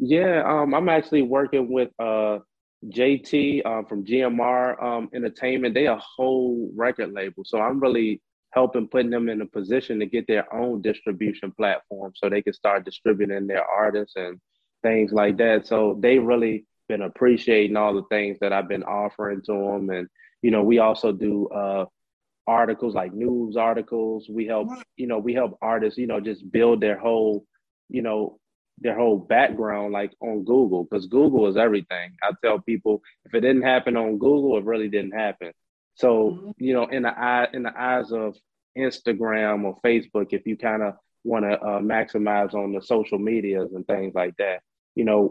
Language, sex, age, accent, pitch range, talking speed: English, male, 20-39, American, 105-120 Hz, 185 wpm